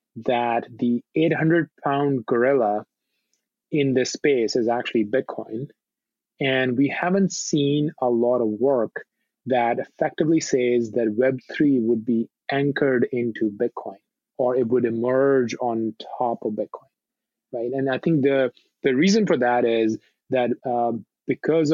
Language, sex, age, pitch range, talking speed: English, male, 20-39, 115-140 Hz, 140 wpm